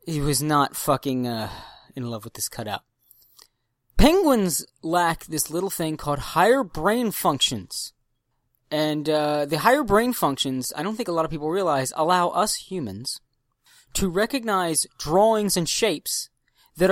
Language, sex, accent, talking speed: English, male, American, 150 wpm